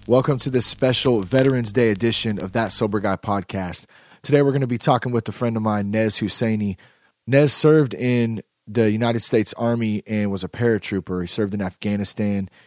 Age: 30-49